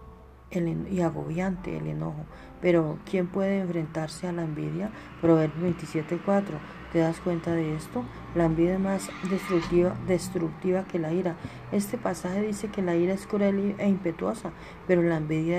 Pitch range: 165-195 Hz